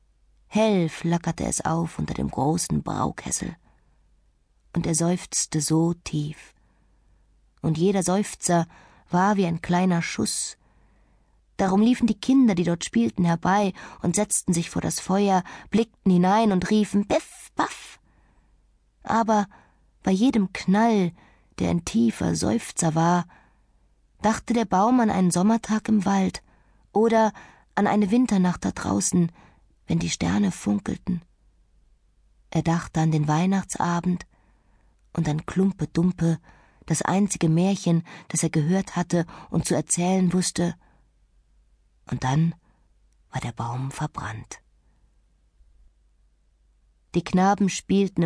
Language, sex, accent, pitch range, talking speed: German, female, German, 155-195 Hz, 120 wpm